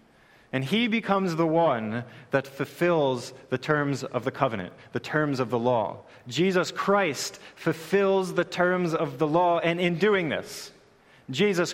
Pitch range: 125-175 Hz